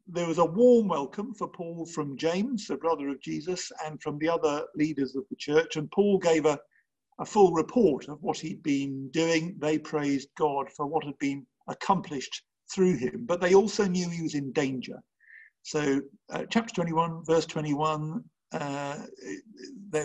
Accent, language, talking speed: British, English, 170 wpm